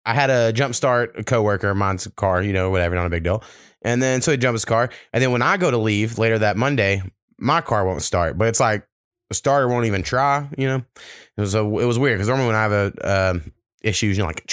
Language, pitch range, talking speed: English, 100-130 Hz, 265 wpm